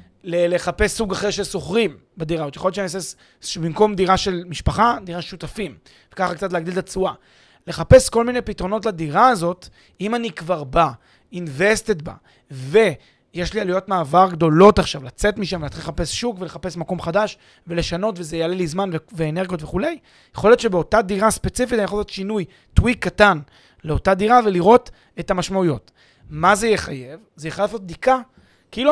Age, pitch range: 30-49, 160-210 Hz